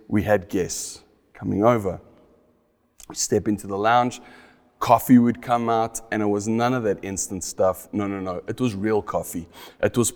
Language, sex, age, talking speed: English, male, 30-49, 185 wpm